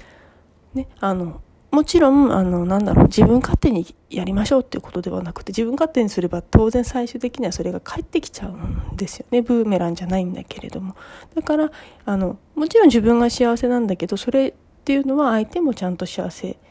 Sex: female